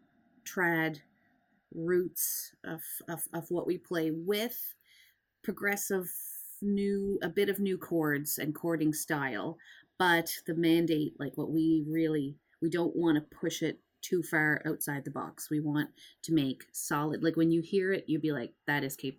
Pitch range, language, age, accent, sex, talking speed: 150-185 Hz, English, 30-49, American, female, 165 wpm